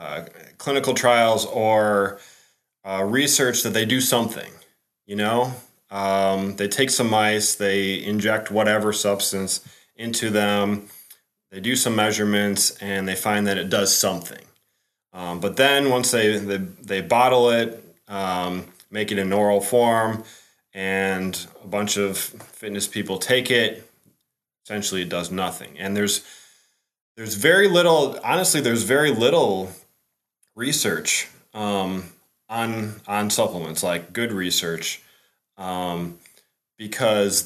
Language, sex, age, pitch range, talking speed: English, male, 30-49, 95-120 Hz, 130 wpm